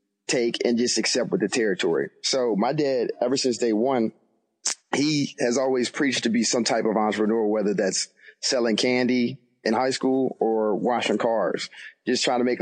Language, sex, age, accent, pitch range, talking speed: English, male, 30-49, American, 105-125 Hz, 180 wpm